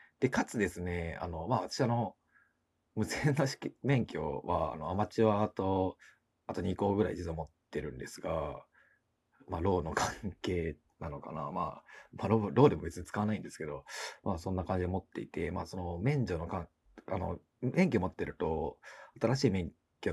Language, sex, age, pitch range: Japanese, male, 40-59, 90-120 Hz